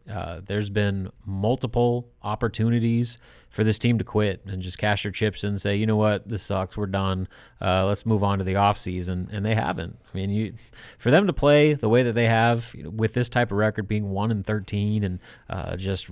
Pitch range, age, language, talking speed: 100-115 Hz, 30-49, English, 225 wpm